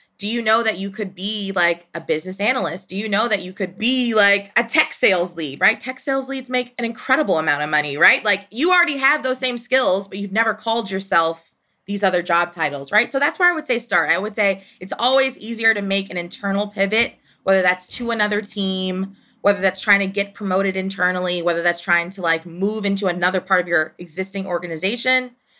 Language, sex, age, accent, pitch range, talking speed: English, female, 20-39, American, 185-235 Hz, 220 wpm